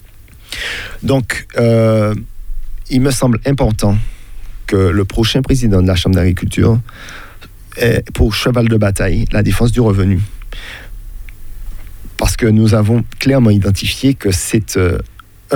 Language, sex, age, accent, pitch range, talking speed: French, male, 40-59, French, 100-125 Hz, 125 wpm